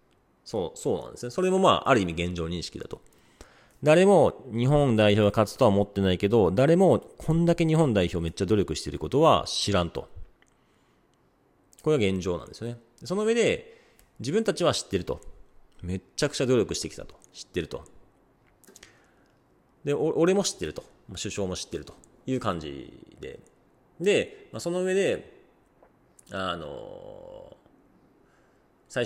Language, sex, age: Japanese, male, 40-59